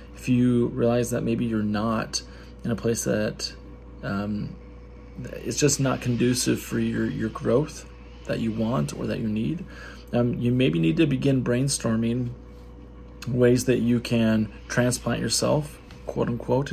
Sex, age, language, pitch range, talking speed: male, 20-39, English, 105-125 Hz, 150 wpm